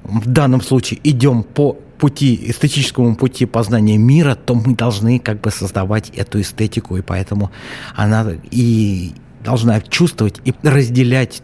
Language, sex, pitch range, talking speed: Russian, male, 100-130 Hz, 135 wpm